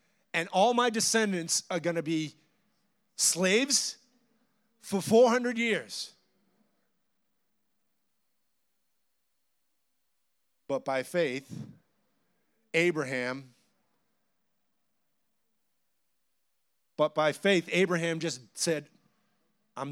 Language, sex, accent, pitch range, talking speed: English, male, American, 175-230 Hz, 70 wpm